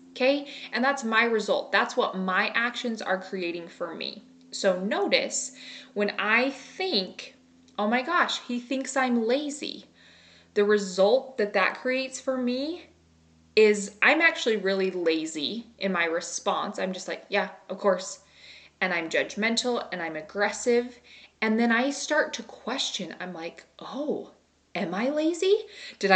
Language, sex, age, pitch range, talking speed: English, female, 20-39, 190-260 Hz, 150 wpm